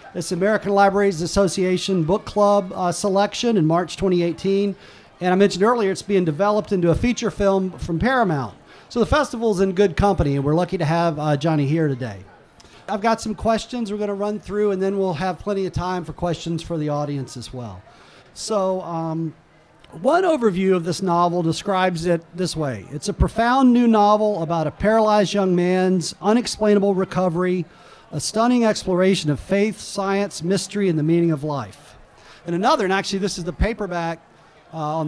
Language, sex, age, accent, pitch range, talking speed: English, male, 40-59, American, 165-205 Hz, 185 wpm